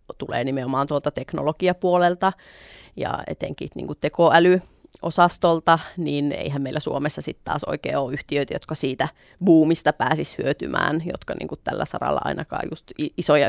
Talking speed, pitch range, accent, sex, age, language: 130 wpm, 145-170 Hz, native, female, 30-49, Finnish